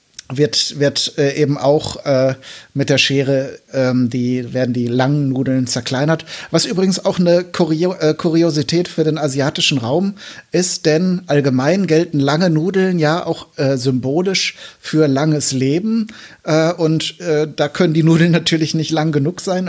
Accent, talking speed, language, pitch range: German, 160 wpm, German, 145-170 Hz